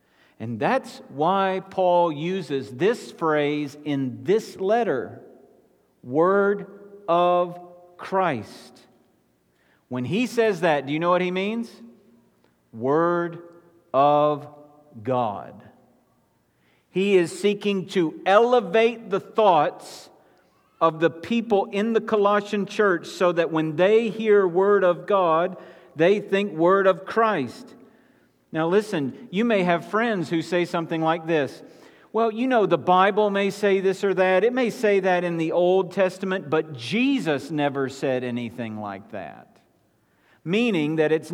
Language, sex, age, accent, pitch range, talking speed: English, male, 50-69, American, 145-195 Hz, 135 wpm